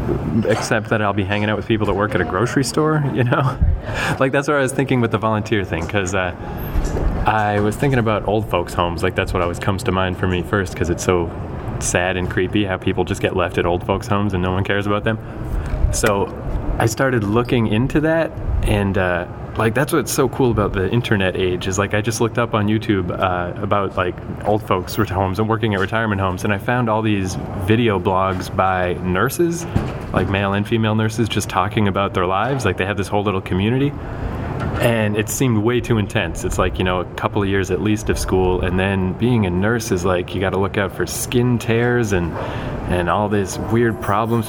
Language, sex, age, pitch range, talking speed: English, male, 20-39, 95-115 Hz, 225 wpm